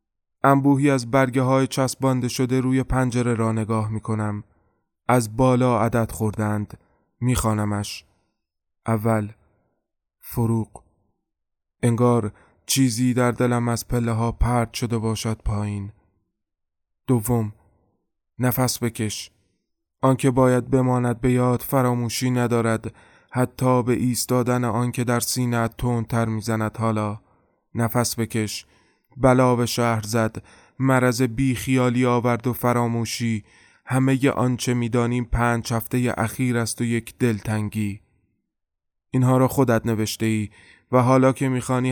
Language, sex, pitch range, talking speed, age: Persian, male, 110-125 Hz, 110 wpm, 20-39